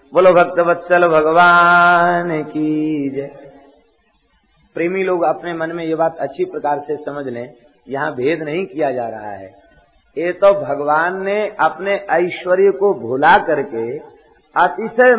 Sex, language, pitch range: male, Hindi, 140-185 Hz